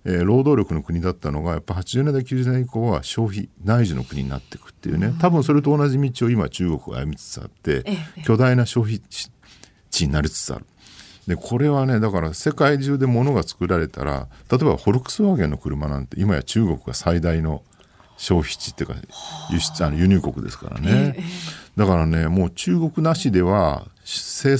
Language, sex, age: Japanese, male, 50-69